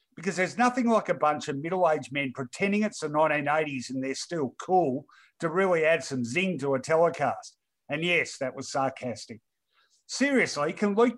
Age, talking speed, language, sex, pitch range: 50-69, 175 wpm, English, male, 145-200 Hz